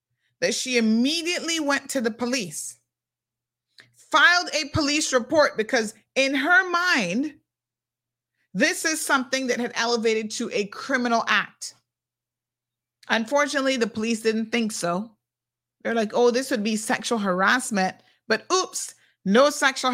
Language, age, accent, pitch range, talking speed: English, 30-49, American, 195-275 Hz, 130 wpm